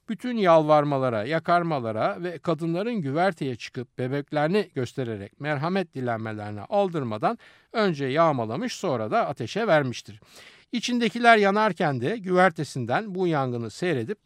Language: Turkish